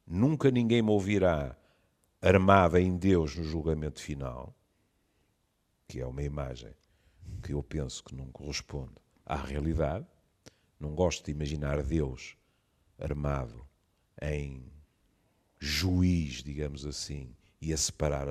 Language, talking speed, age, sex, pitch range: Portuguese, 115 wpm, 50-69, male, 75-125 Hz